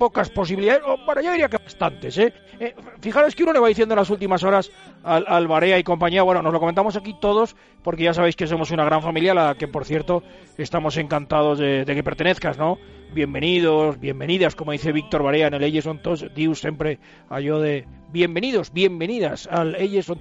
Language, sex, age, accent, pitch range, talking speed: Spanish, male, 40-59, Spanish, 160-200 Hz, 205 wpm